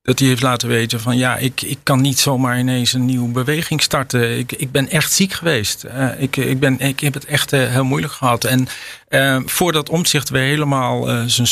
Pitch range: 115-145 Hz